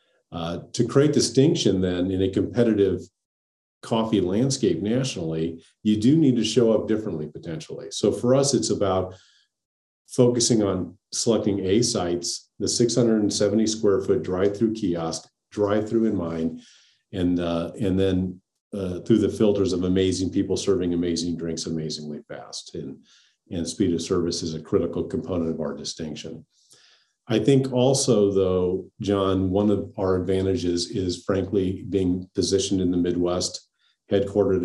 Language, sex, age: English, male, 40-59